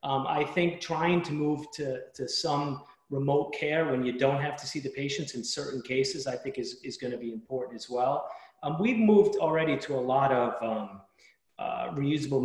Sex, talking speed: male, 200 wpm